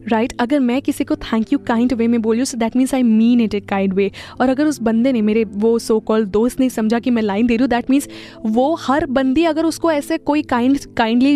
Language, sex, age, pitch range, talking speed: Hindi, female, 10-29, 215-255 Hz, 250 wpm